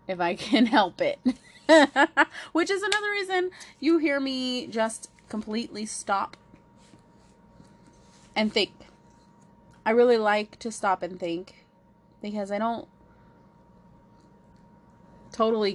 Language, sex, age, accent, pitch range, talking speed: English, female, 20-39, American, 200-285 Hz, 105 wpm